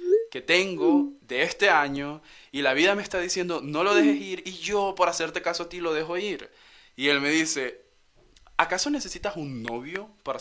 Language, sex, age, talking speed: English, male, 20-39, 195 wpm